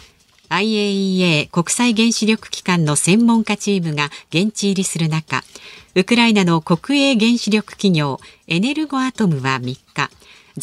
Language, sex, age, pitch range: Japanese, female, 50-69, 160-235 Hz